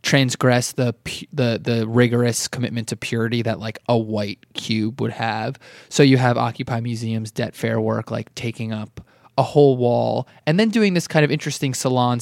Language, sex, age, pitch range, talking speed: English, male, 20-39, 115-130 Hz, 180 wpm